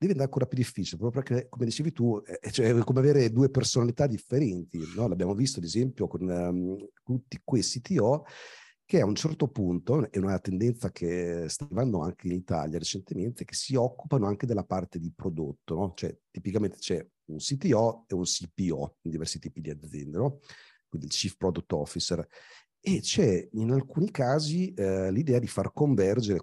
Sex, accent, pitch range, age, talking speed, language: male, native, 90-125 Hz, 40-59, 165 wpm, Italian